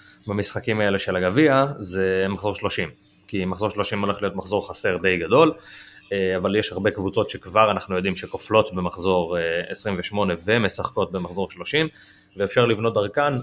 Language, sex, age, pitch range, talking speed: Hebrew, male, 20-39, 95-110 Hz, 145 wpm